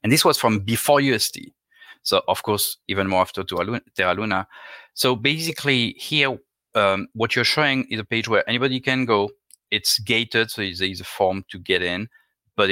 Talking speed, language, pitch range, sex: 185 wpm, English, 95-120 Hz, male